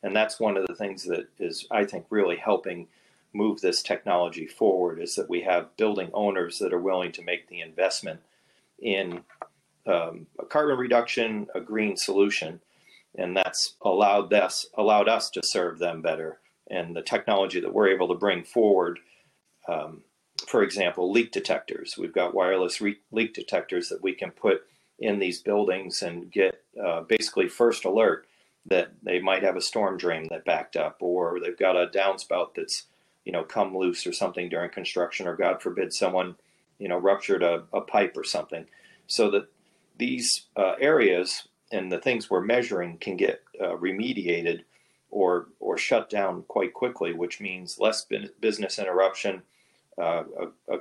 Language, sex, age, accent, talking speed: English, male, 40-59, American, 170 wpm